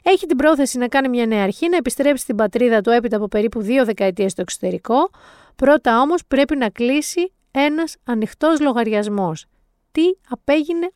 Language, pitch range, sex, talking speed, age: Greek, 215-290 Hz, female, 165 wpm, 30-49